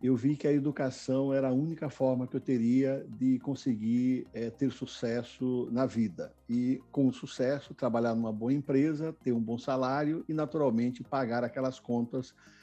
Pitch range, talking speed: 125-160 Hz, 165 wpm